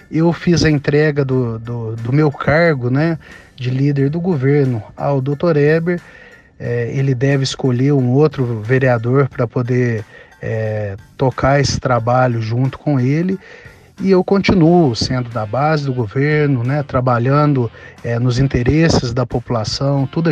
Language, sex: Portuguese, male